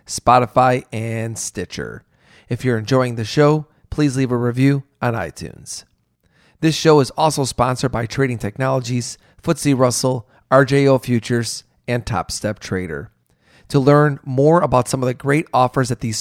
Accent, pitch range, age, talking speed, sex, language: American, 115-140 Hz, 40-59, 150 wpm, male, English